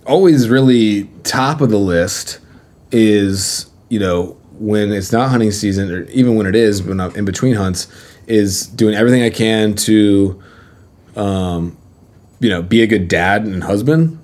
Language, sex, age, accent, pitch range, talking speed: English, male, 20-39, American, 95-115 Hz, 165 wpm